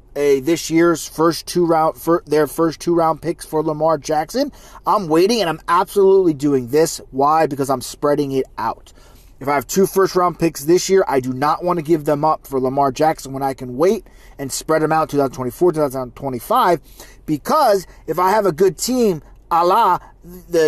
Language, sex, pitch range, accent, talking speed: English, male, 140-180 Hz, American, 195 wpm